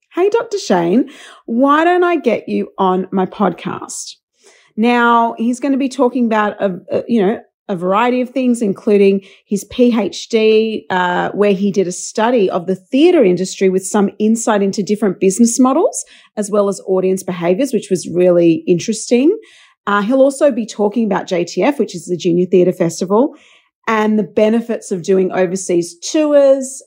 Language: English